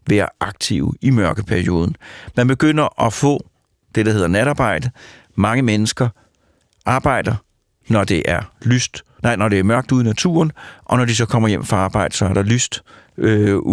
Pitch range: 105-135 Hz